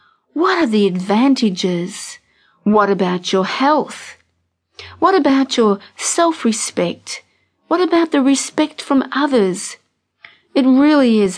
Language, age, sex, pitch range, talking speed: English, 50-69, female, 195-270 Hz, 110 wpm